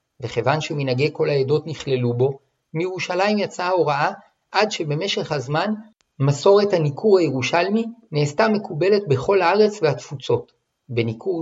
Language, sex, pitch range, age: Hebrew, male, 140-185 Hz, 50-69